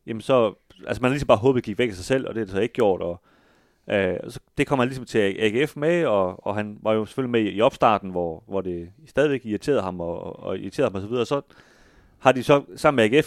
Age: 30-49